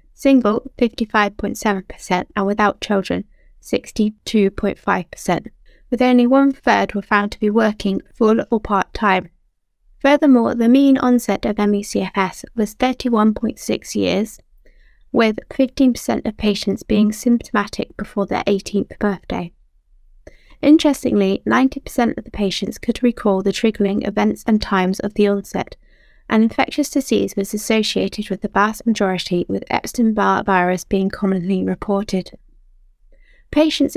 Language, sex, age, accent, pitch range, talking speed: English, female, 20-39, British, 200-245 Hz, 120 wpm